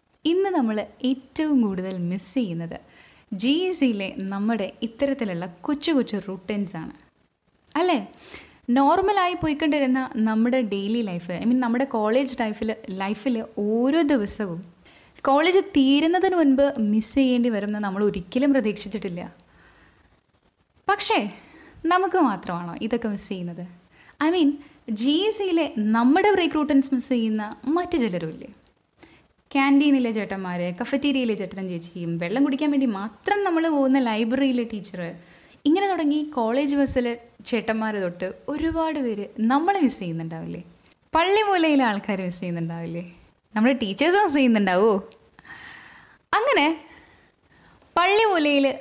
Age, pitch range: 10-29, 200-290 Hz